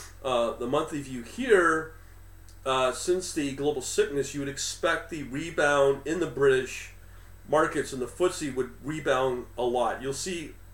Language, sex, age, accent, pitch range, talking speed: English, male, 40-59, American, 120-155 Hz, 155 wpm